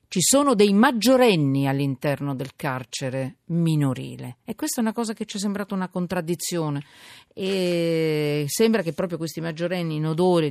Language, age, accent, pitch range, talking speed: Italian, 40-59, native, 150-195 Hz, 155 wpm